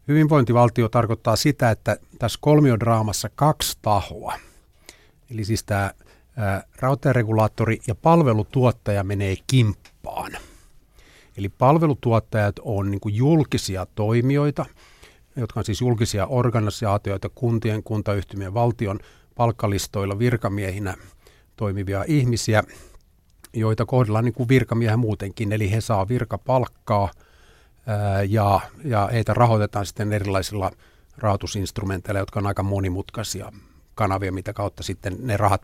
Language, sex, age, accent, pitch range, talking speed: Finnish, male, 50-69, native, 100-120 Hz, 95 wpm